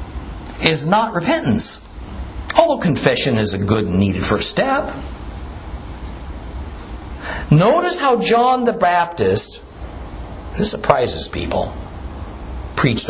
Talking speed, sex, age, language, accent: 95 wpm, male, 50-69, English, American